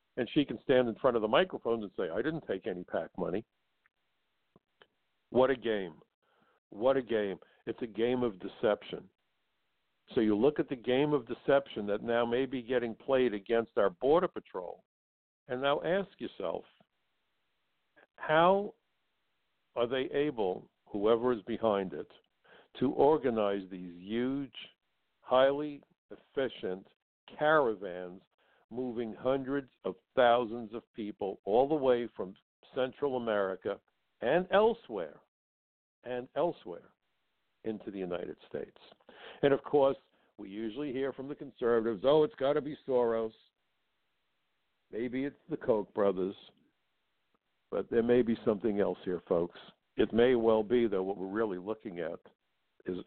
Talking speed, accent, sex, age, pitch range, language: 140 wpm, American, male, 60-79, 110-135 Hz, English